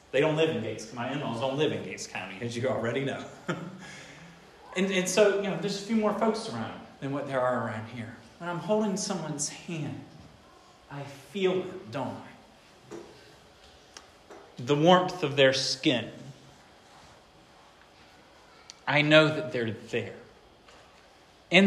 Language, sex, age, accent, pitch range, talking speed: English, male, 40-59, American, 120-155 Hz, 150 wpm